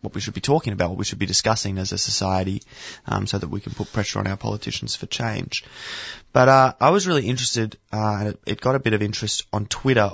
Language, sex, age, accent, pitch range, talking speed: English, male, 20-39, Australian, 95-115 Hz, 250 wpm